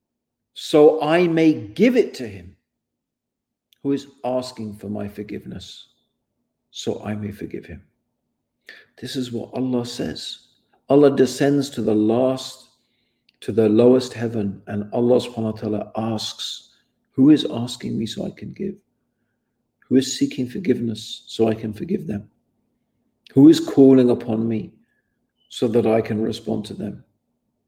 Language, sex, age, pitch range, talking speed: English, male, 50-69, 110-135 Hz, 145 wpm